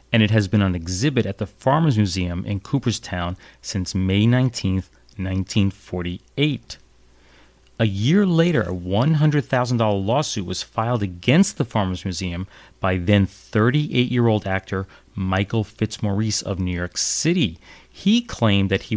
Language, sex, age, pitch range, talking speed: English, male, 30-49, 95-120 Hz, 125 wpm